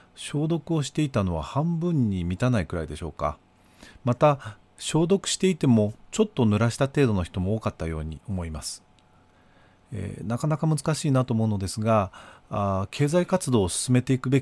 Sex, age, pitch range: male, 40-59, 95-140 Hz